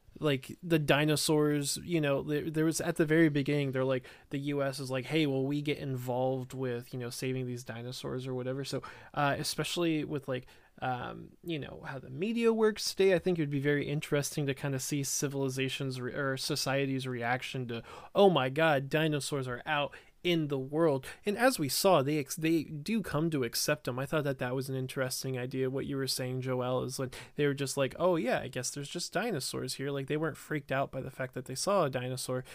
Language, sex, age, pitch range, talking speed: English, male, 20-39, 130-155 Hz, 220 wpm